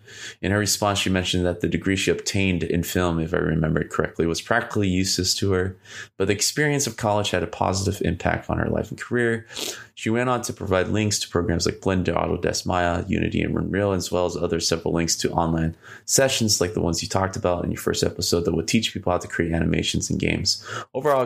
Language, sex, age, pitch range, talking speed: English, male, 20-39, 85-105 Hz, 230 wpm